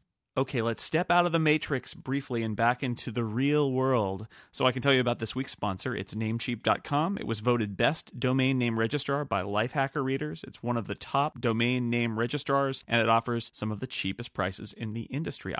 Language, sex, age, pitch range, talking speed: English, male, 30-49, 115-140 Hz, 210 wpm